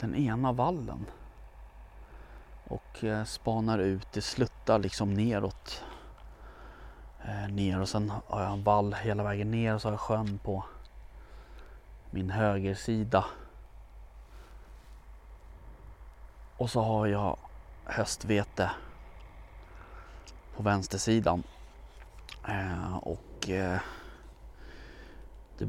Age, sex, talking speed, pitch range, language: 30-49, male, 85 wpm, 85-110 Hz, Swedish